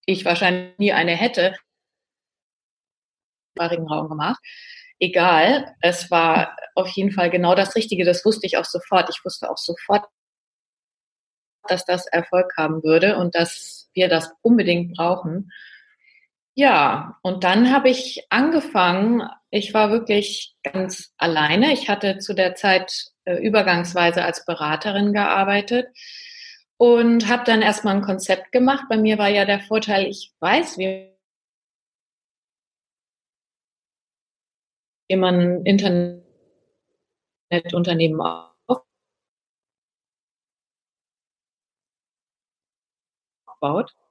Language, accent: German, German